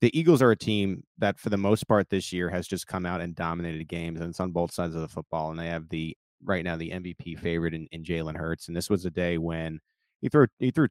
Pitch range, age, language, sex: 80-100 Hz, 30-49, English, male